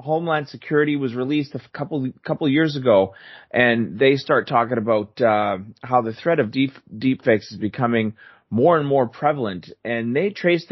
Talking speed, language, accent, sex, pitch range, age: 170 wpm, English, American, male, 115-150 Hz, 30-49